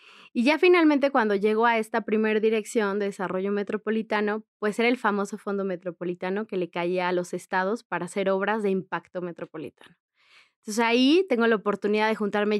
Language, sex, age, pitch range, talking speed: Spanish, female, 20-39, 190-220 Hz, 175 wpm